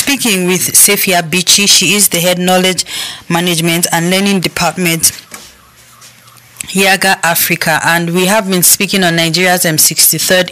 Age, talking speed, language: 10-29, 130 wpm, English